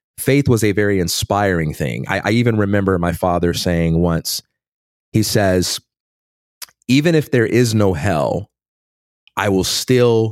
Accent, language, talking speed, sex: American, English, 145 wpm, male